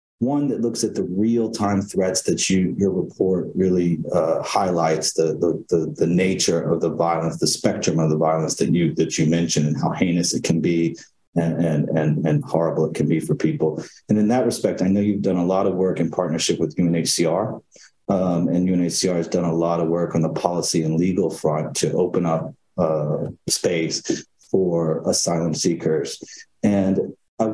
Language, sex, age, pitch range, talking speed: English, male, 40-59, 80-95 Hz, 185 wpm